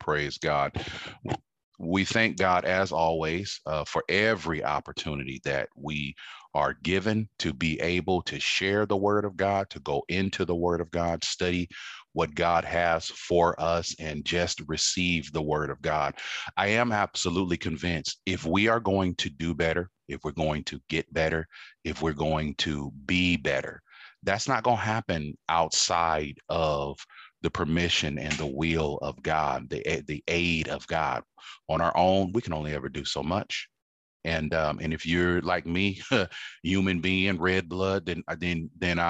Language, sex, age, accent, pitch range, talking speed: English, male, 40-59, American, 75-95 Hz, 170 wpm